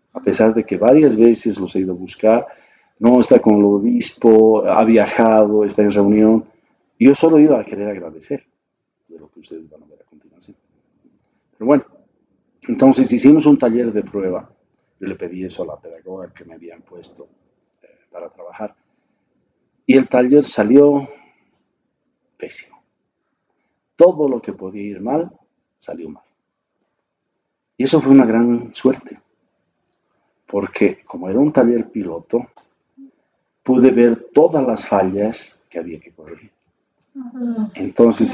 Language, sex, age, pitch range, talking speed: Spanish, male, 50-69, 100-135 Hz, 145 wpm